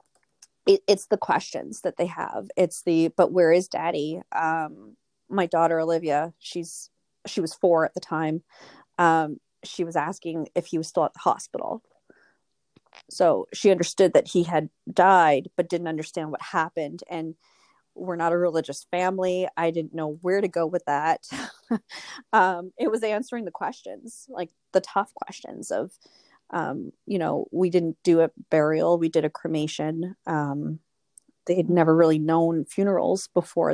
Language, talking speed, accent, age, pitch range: English, 160 wpm, American, 30-49, 165-195 Hz